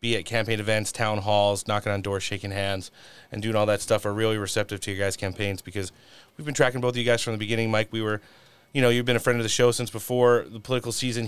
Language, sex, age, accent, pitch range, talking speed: English, male, 30-49, American, 105-125 Hz, 270 wpm